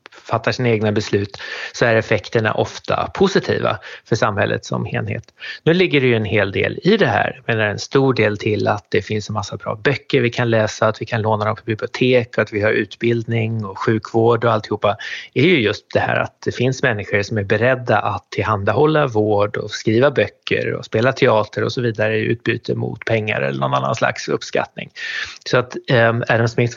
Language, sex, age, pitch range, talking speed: Swedish, male, 30-49, 105-130 Hz, 215 wpm